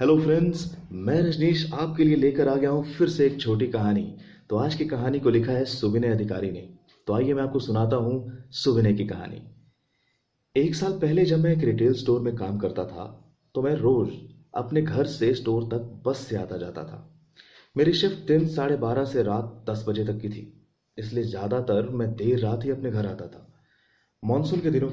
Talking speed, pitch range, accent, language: 190 wpm, 115-155 Hz, native, Hindi